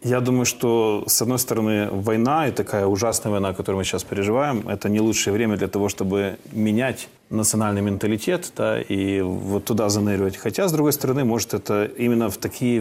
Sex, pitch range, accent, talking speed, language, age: male, 105-120 Hz, native, 185 wpm, Russian, 30-49